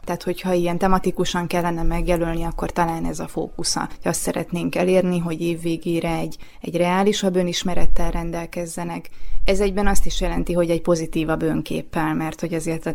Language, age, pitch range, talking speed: Hungarian, 20-39, 165-180 Hz, 160 wpm